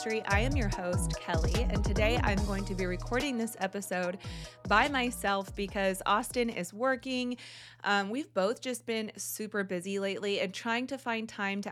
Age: 20-39